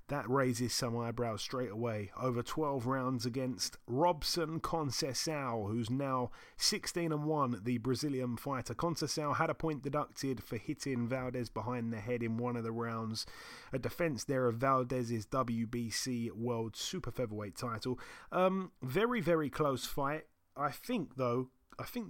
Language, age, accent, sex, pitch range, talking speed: English, 30-49, British, male, 115-140 Hz, 150 wpm